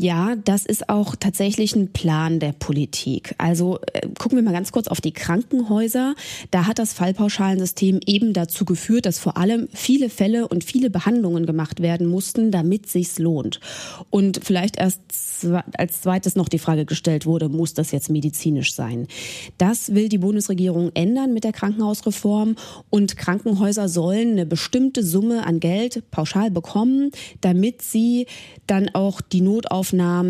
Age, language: 20-39, German